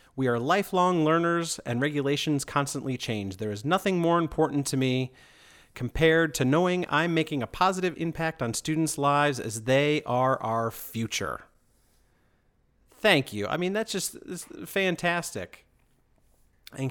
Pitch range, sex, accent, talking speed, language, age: 125-165 Hz, male, American, 140 wpm, English, 40-59